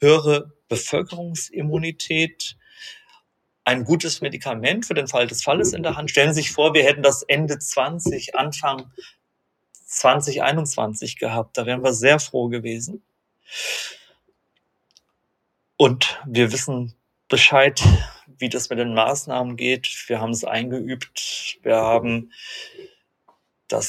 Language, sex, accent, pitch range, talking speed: German, male, German, 115-150 Hz, 120 wpm